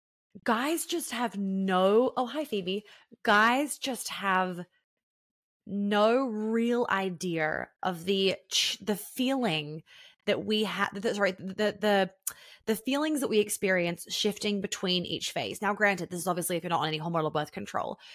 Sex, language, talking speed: female, English, 150 wpm